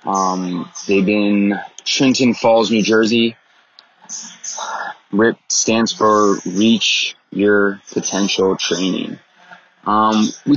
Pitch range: 105-135 Hz